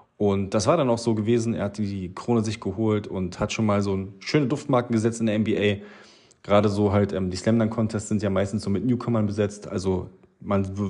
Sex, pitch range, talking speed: male, 95-115 Hz, 225 wpm